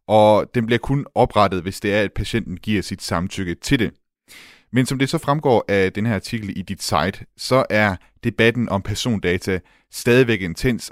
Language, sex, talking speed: Danish, male, 185 wpm